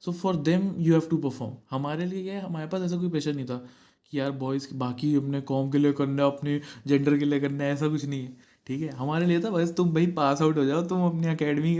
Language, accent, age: Hindi, native, 20-39